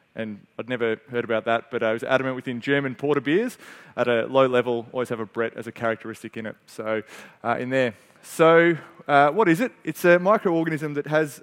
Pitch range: 120-145 Hz